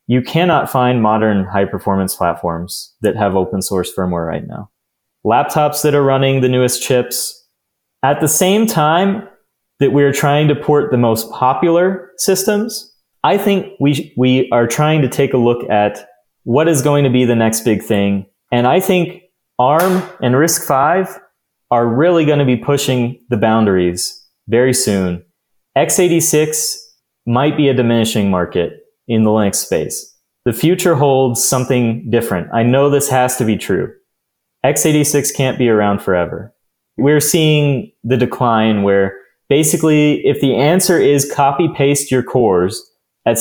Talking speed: 155 wpm